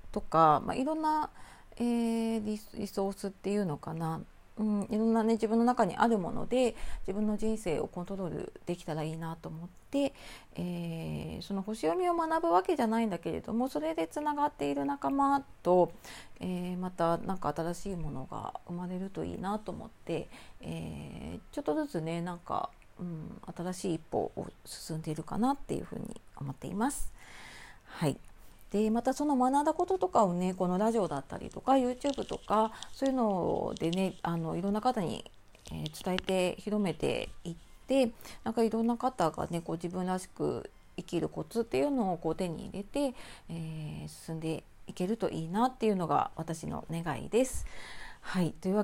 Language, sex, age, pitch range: Japanese, female, 40-59, 165-235 Hz